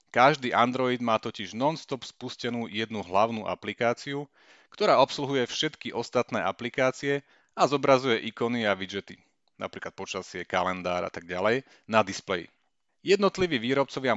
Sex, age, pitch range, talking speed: male, 30-49, 105-135 Hz, 125 wpm